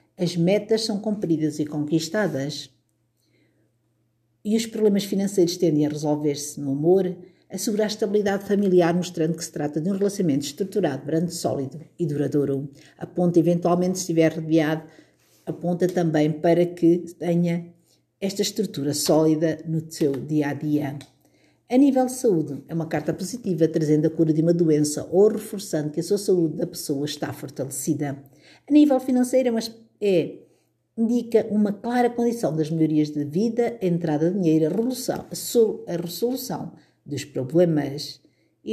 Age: 50-69